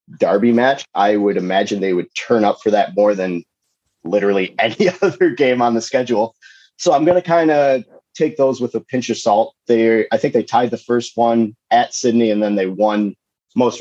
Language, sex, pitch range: English, male, 110-140 Hz